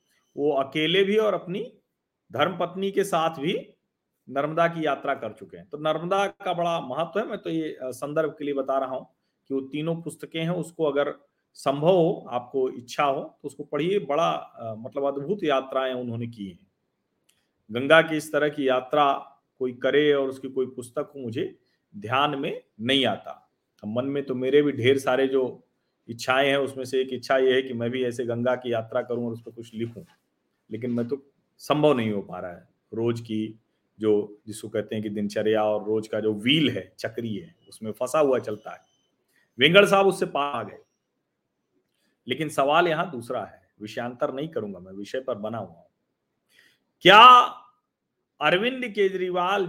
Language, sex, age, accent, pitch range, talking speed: Hindi, male, 40-59, native, 125-170 Hz, 180 wpm